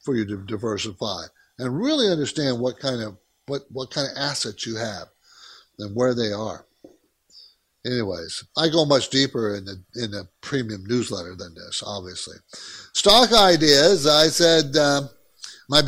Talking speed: 155 wpm